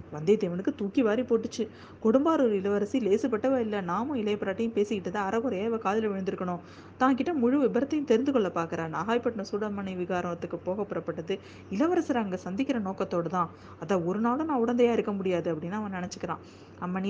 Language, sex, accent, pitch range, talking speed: Tamil, female, native, 180-240 Hz, 135 wpm